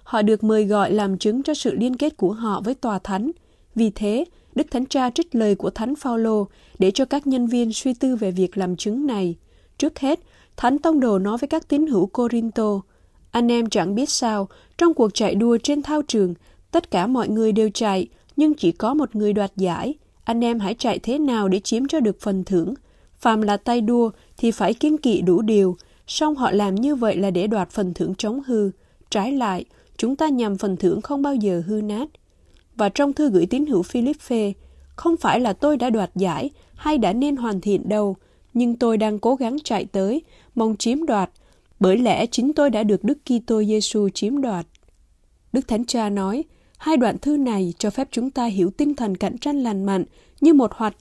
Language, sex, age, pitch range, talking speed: Vietnamese, female, 20-39, 200-265 Hz, 215 wpm